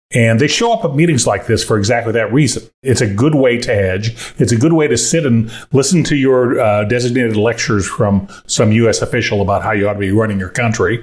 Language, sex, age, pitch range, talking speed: English, male, 40-59, 110-145 Hz, 240 wpm